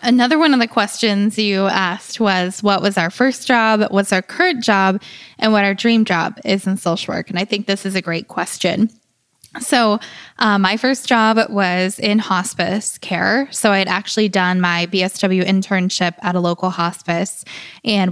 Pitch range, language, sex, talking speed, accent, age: 175-220 Hz, English, female, 185 wpm, American, 10-29